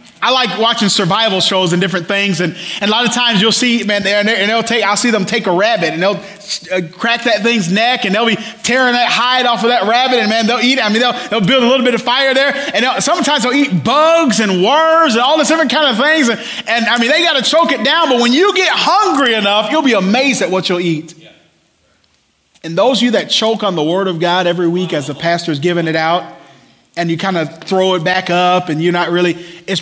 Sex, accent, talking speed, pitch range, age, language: male, American, 260 wpm, 165-235 Hz, 30-49, English